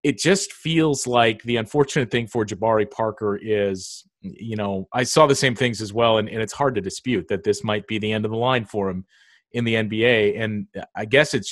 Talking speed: 230 wpm